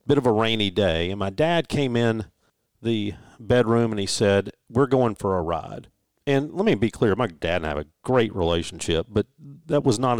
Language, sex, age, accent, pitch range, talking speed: English, male, 40-59, American, 90-120 Hz, 220 wpm